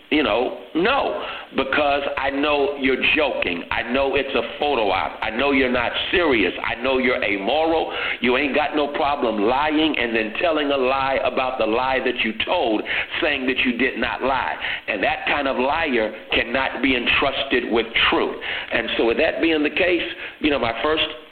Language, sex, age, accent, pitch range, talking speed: English, male, 60-79, American, 125-155 Hz, 190 wpm